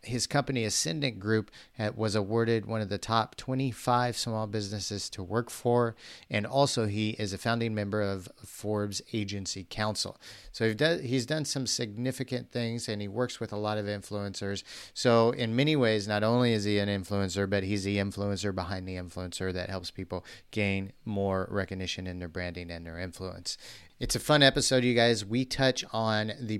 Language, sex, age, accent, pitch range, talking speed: English, male, 40-59, American, 100-120 Hz, 180 wpm